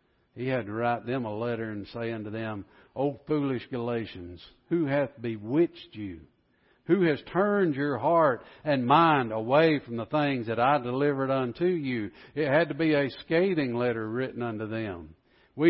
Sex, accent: male, American